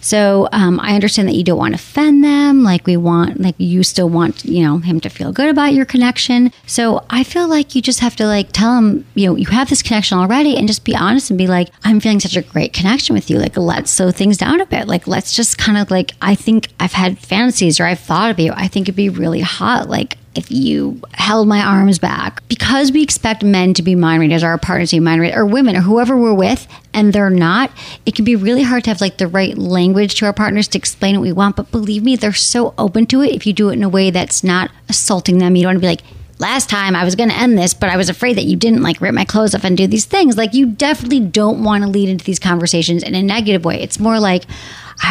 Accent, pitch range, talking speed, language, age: American, 180-230 Hz, 275 wpm, English, 40-59